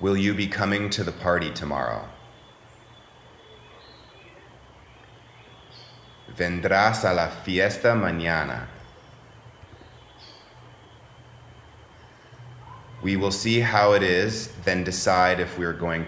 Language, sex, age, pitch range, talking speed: English, male, 30-49, 90-120 Hz, 90 wpm